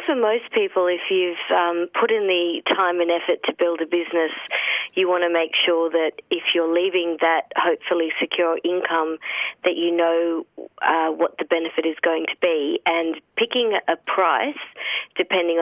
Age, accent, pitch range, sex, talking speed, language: 40-59, Australian, 165-185 Hz, female, 175 wpm, English